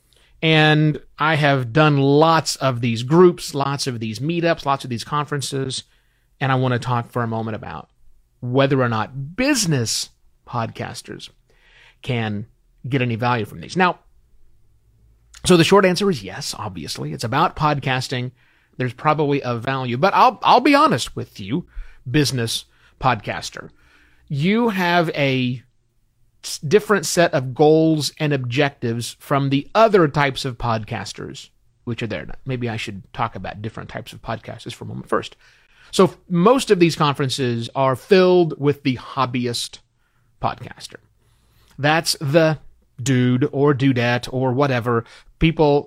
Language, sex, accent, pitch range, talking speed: English, male, American, 120-155 Hz, 145 wpm